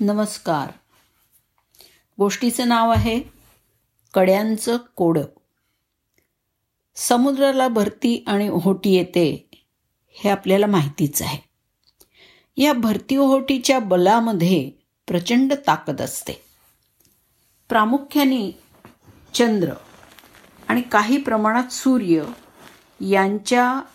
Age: 50-69